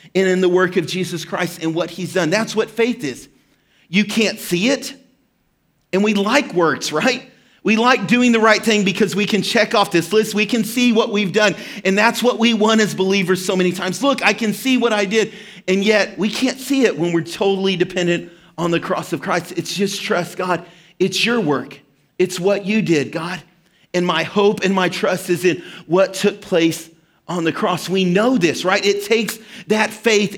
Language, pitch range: English, 175-215 Hz